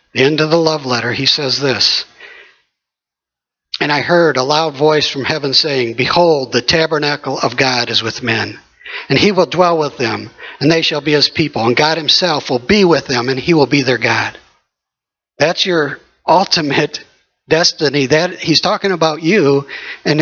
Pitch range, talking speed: 125-155 Hz, 180 wpm